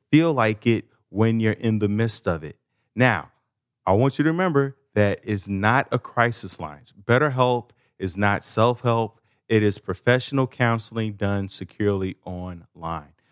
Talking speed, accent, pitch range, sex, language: 155 wpm, American, 105-140 Hz, male, English